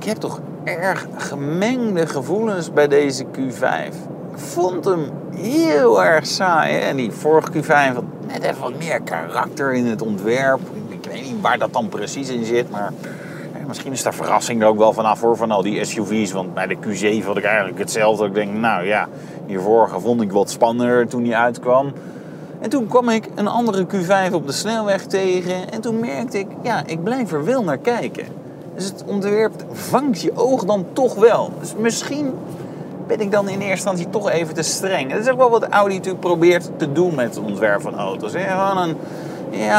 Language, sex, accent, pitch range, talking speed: Dutch, male, Dutch, 140-195 Hz, 205 wpm